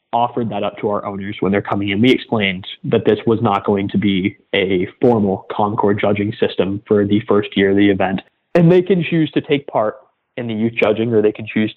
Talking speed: 235 wpm